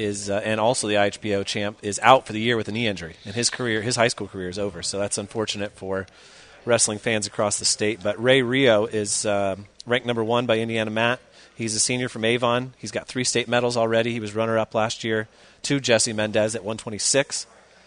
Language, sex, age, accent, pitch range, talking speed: English, male, 30-49, American, 100-120 Hz, 220 wpm